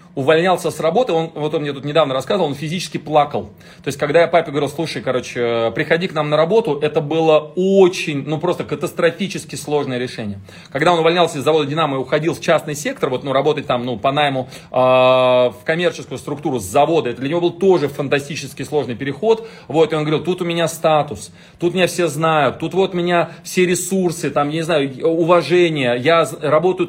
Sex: male